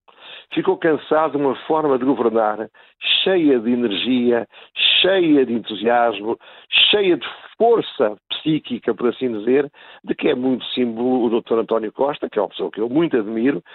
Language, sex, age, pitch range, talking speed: Portuguese, male, 50-69, 125-175 Hz, 160 wpm